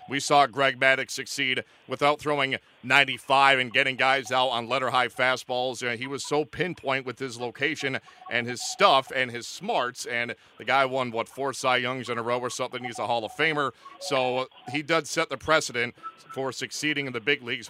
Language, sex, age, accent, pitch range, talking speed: English, male, 40-59, American, 130-155 Hz, 205 wpm